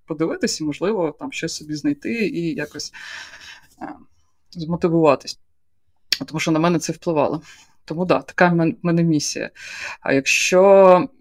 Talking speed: 130 wpm